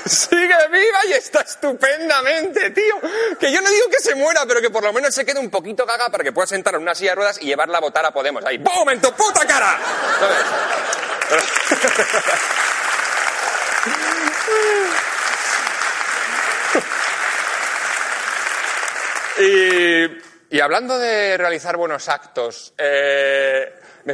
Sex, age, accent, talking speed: male, 30-49, Spanish, 130 wpm